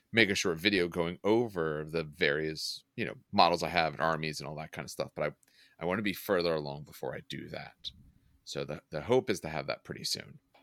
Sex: male